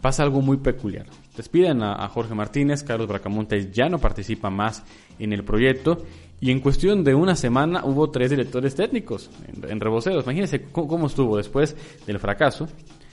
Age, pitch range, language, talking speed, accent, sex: 20-39, 105-140 Hz, Spanish, 160 wpm, Mexican, male